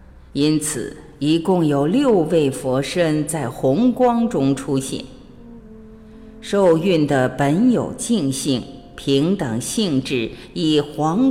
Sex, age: female, 50-69